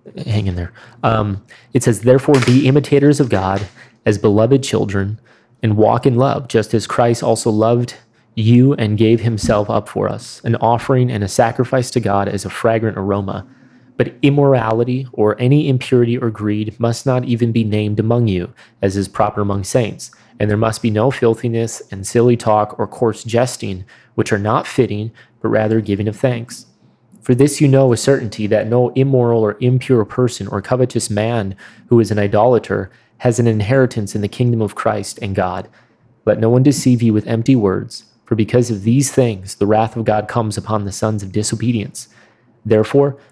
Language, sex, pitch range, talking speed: English, male, 105-125 Hz, 185 wpm